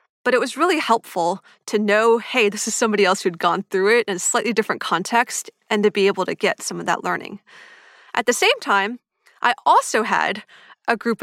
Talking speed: 215 wpm